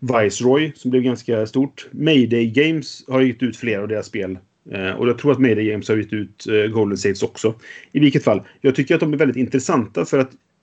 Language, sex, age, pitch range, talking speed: Swedish, male, 30-49, 115-150 Hz, 225 wpm